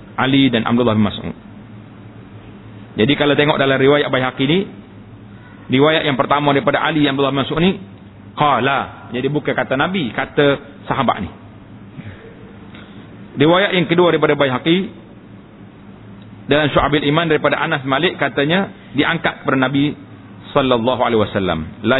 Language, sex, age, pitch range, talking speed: Malay, male, 40-59, 105-150 Hz, 135 wpm